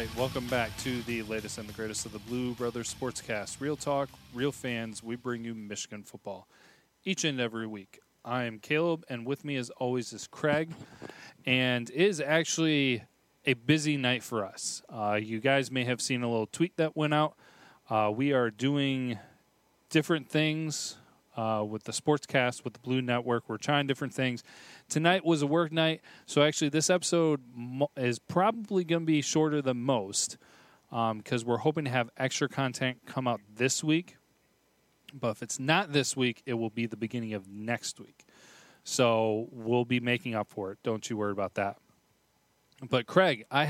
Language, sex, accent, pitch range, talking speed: English, male, American, 115-145 Hz, 185 wpm